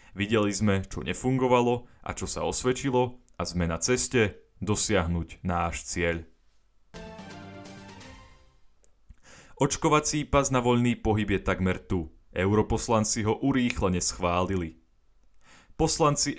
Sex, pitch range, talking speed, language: male, 90-115 Hz, 105 wpm, Slovak